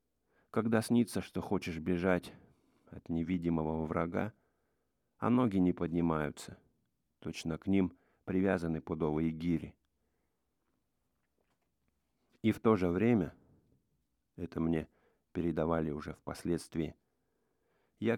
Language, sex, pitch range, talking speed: English, male, 80-100 Hz, 95 wpm